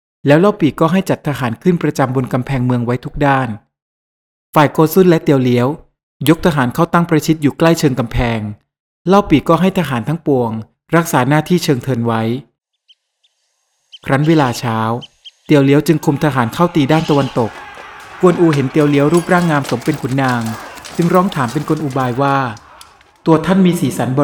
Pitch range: 125-160 Hz